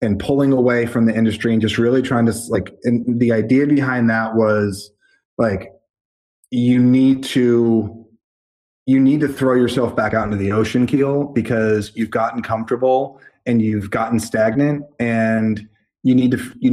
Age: 20-39